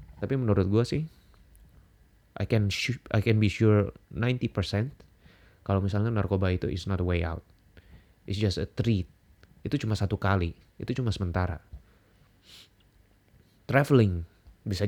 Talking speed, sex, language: 135 wpm, male, Indonesian